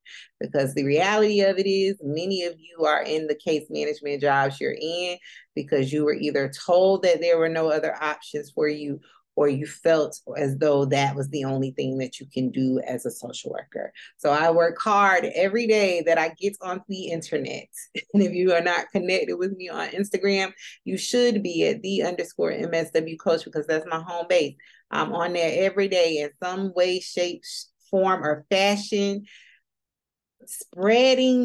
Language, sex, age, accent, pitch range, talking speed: English, female, 30-49, American, 140-185 Hz, 185 wpm